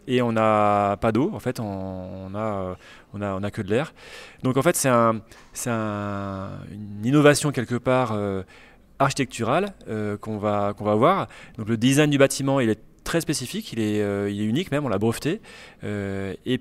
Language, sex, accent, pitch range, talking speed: French, male, French, 105-130 Hz, 200 wpm